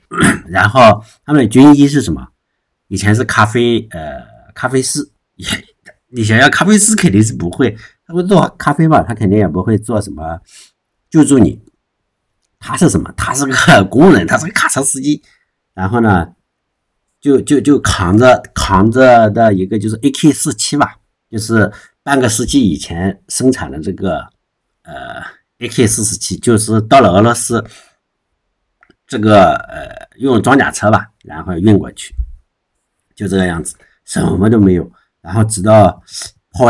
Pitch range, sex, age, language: 95-120 Hz, male, 50-69, Chinese